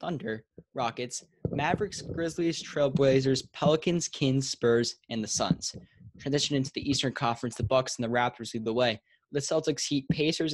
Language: English